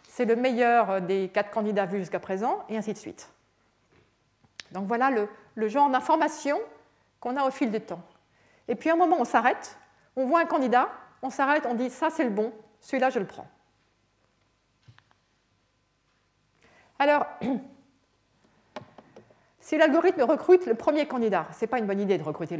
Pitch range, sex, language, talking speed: 215-305 Hz, female, French, 175 wpm